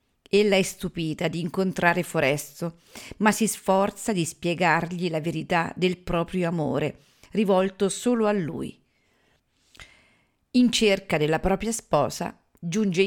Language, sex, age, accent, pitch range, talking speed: Italian, female, 40-59, native, 160-200 Hz, 120 wpm